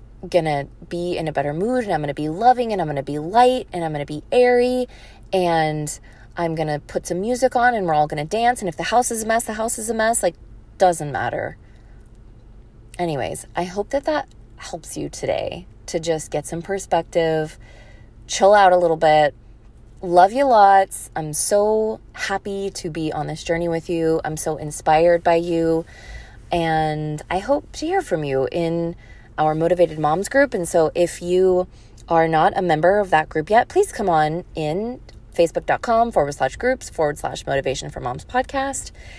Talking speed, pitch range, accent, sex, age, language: 195 wpm, 155-210 Hz, American, female, 20-39, English